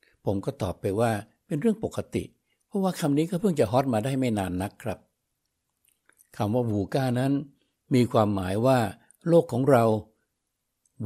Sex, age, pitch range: male, 60-79, 110-145 Hz